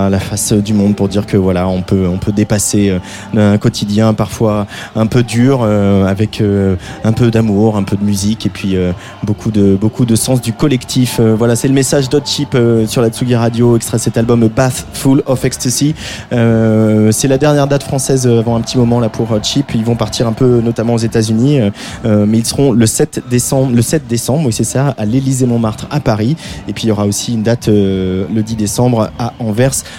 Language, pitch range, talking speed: French, 110-130 Hz, 220 wpm